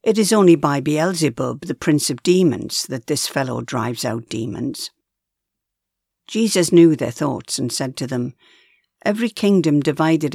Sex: female